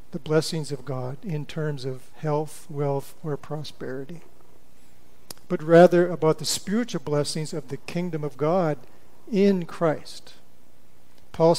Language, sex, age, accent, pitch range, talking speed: English, male, 50-69, American, 140-170 Hz, 130 wpm